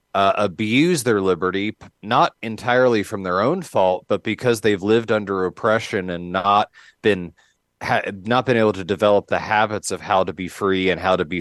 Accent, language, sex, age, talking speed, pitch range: American, English, male, 30-49, 185 wpm, 95-115 Hz